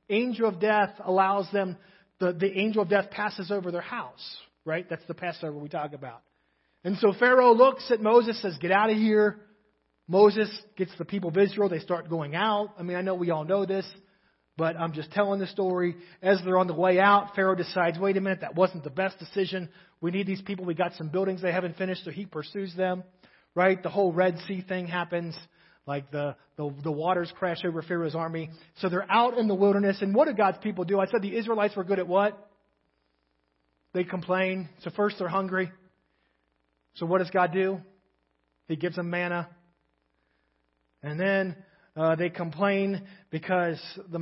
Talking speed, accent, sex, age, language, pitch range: 195 wpm, American, male, 30-49, English, 165-195 Hz